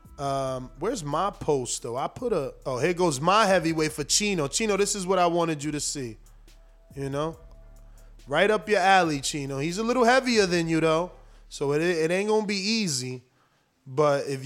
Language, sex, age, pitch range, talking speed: English, male, 20-39, 150-205 Hz, 195 wpm